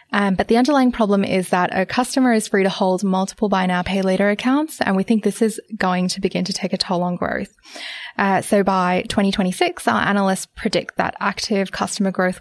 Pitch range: 185-225 Hz